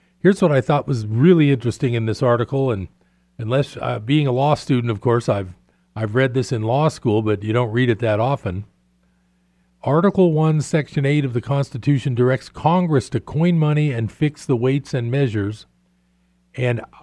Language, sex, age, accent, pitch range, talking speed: English, male, 50-69, American, 115-150 Hz, 185 wpm